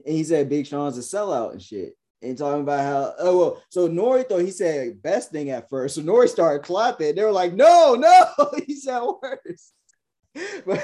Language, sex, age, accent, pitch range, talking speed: English, male, 20-39, American, 145-190 Hz, 205 wpm